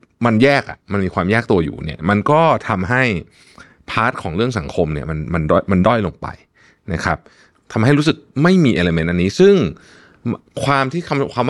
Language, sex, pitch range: Thai, male, 85-130 Hz